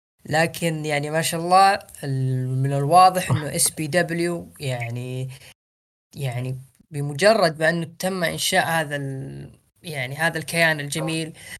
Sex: female